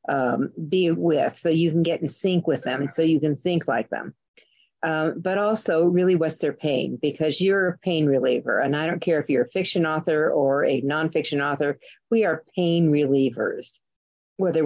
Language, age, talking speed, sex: English, 50-69, 190 wpm, female